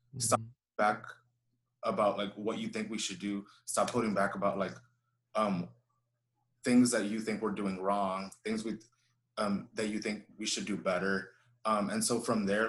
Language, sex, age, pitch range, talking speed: English, male, 20-39, 100-120 Hz, 175 wpm